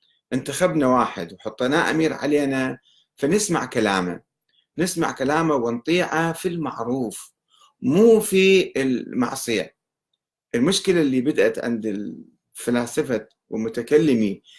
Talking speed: 85 wpm